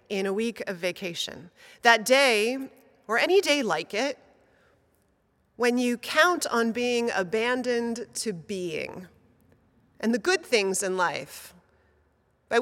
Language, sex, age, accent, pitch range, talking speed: English, female, 30-49, American, 205-255 Hz, 130 wpm